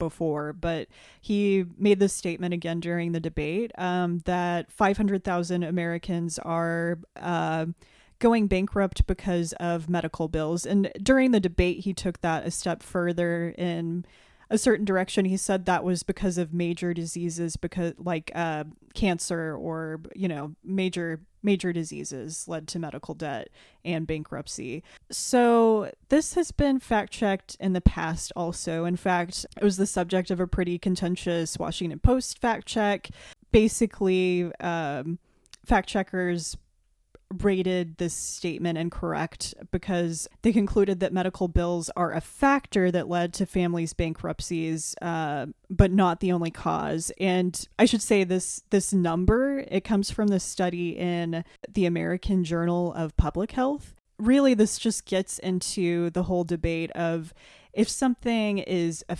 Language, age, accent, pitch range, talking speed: English, 20-39, American, 170-195 Hz, 145 wpm